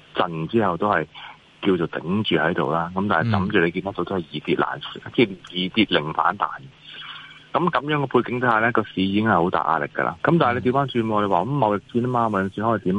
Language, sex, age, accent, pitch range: Chinese, male, 30-49, native, 90-125 Hz